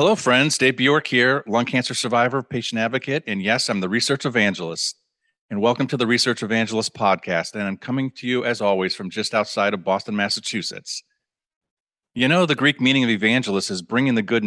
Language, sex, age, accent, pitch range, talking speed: English, male, 40-59, American, 100-125 Hz, 195 wpm